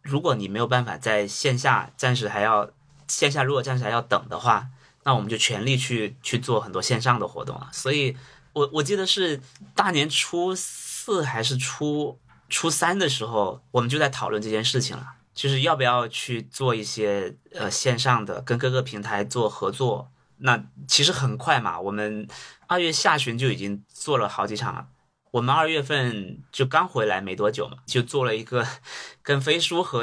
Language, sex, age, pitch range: Chinese, male, 20-39, 120-145 Hz